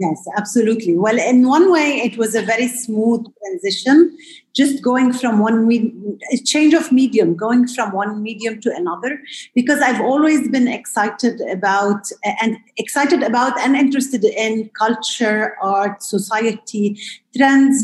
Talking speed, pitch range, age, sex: 140 wpm, 205-255 Hz, 30-49, female